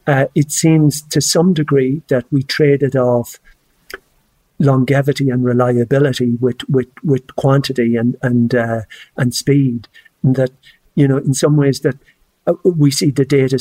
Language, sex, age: English, male, 50-69